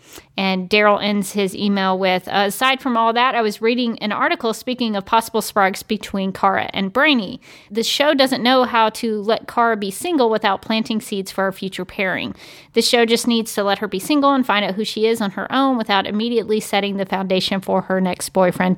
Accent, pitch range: American, 195-230 Hz